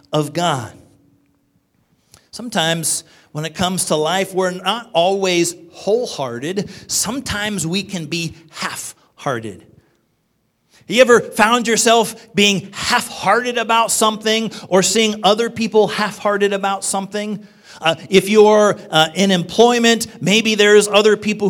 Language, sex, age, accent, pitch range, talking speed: English, male, 40-59, American, 185-250 Hz, 120 wpm